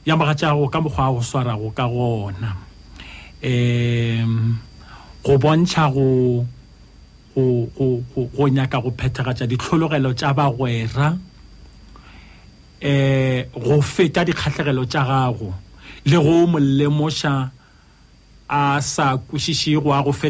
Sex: male